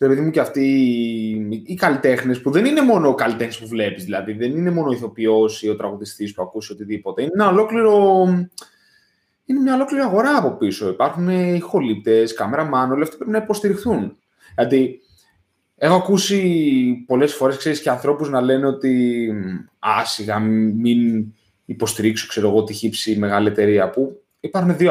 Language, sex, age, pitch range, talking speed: Greek, male, 20-39, 110-175 Hz, 250 wpm